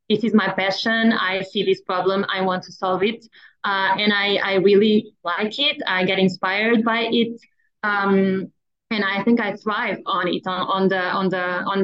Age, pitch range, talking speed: 20-39, 190-220 Hz, 210 wpm